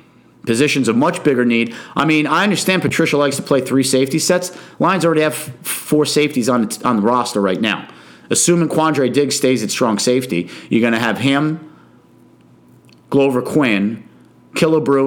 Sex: male